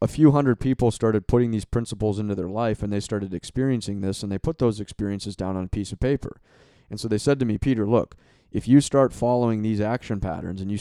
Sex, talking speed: male, 245 wpm